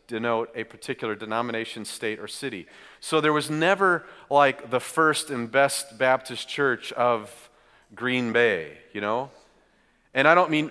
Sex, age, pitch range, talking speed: male, 40-59, 125-155 Hz, 150 wpm